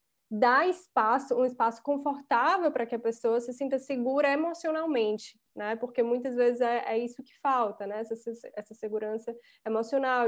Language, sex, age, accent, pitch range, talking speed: Portuguese, female, 10-29, Brazilian, 225-265 Hz, 160 wpm